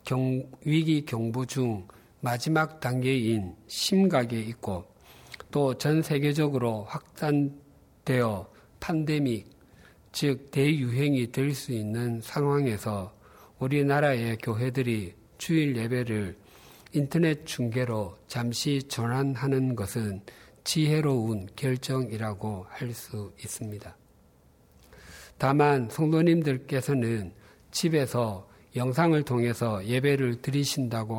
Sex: male